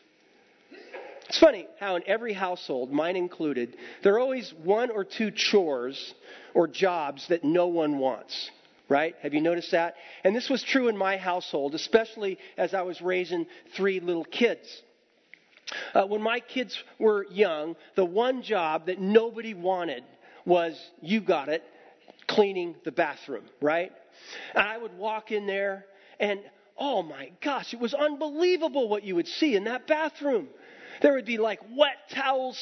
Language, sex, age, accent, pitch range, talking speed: English, male, 40-59, American, 195-270 Hz, 160 wpm